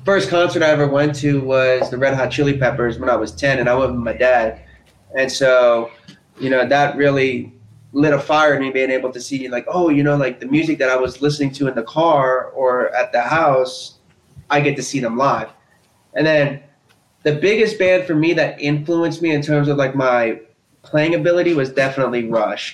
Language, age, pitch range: English, 20-39, 125-145 Hz